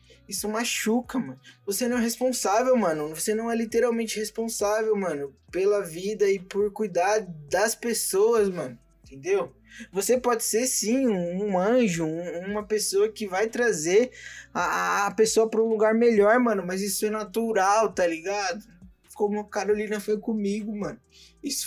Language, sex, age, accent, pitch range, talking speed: Portuguese, male, 20-39, Brazilian, 200-245 Hz, 160 wpm